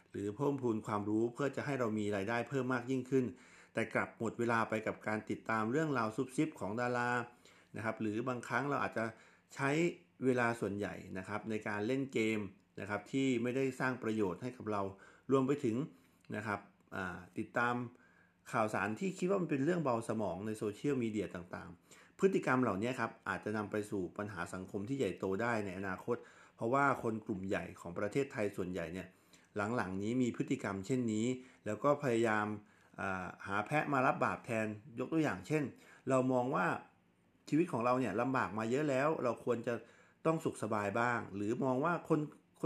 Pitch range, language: 105-130 Hz, Thai